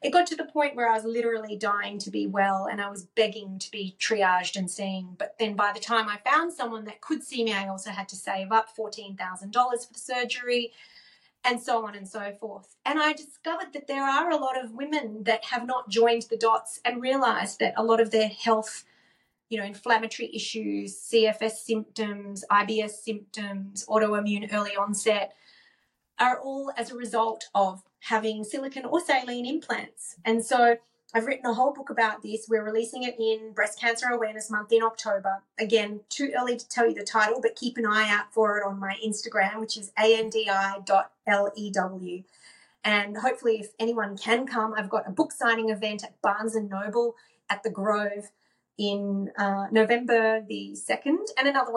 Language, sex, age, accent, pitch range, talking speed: English, female, 30-49, Australian, 205-235 Hz, 185 wpm